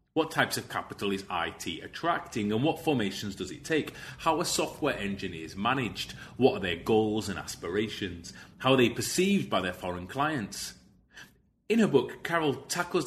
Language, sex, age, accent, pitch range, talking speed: English, male, 30-49, British, 100-140 Hz, 170 wpm